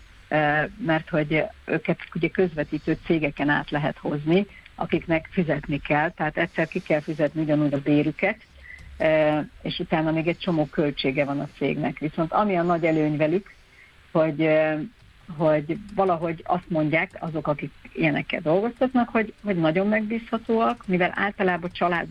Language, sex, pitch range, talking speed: Hungarian, female, 150-185 Hz, 140 wpm